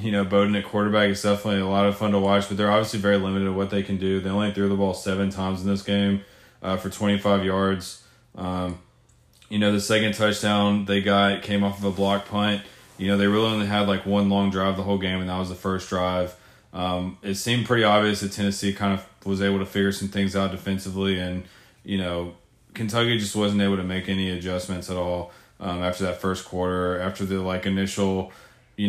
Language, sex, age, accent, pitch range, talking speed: English, male, 20-39, American, 95-100 Hz, 230 wpm